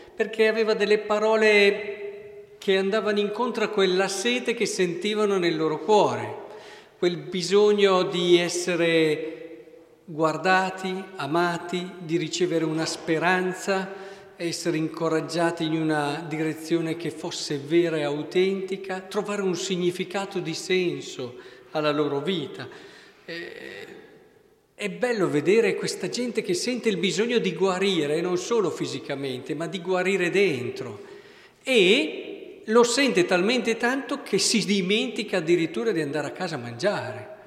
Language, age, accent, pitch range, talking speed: Italian, 50-69, native, 165-210 Hz, 120 wpm